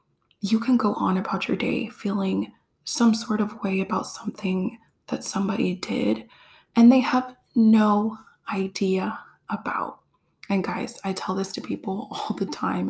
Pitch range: 195-235 Hz